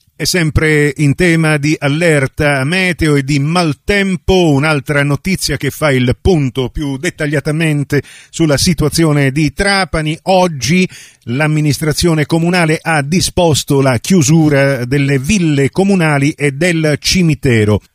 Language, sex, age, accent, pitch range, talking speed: Italian, male, 50-69, native, 120-155 Hz, 120 wpm